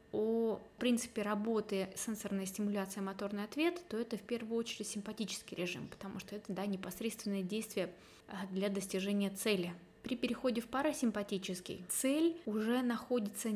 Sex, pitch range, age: female, 200-230 Hz, 20-39